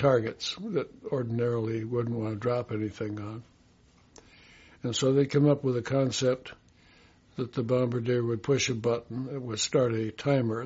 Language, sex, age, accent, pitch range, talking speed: English, male, 60-79, American, 115-130 Hz, 165 wpm